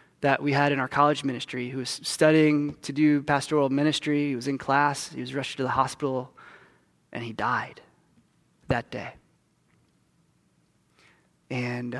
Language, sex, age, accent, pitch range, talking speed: English, male, 20-39, American, 140-160 Hz, 150 wpm